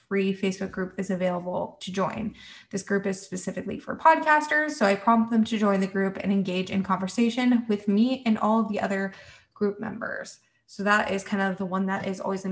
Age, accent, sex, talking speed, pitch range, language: 20-39, American, female, 210 wpm, 190-250 Hz, English